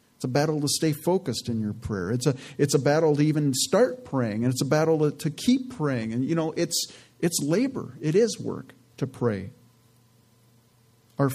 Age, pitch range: 40-59, 125-160 Hz